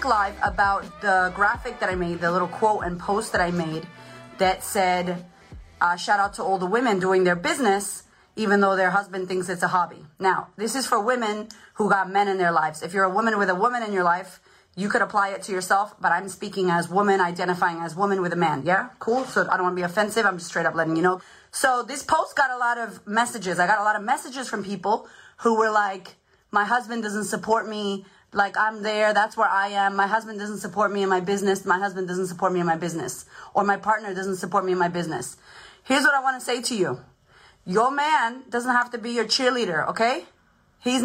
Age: 30-49